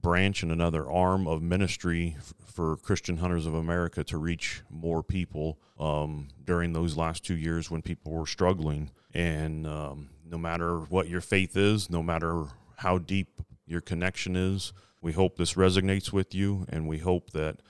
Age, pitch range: 30-49, 80-95 Hz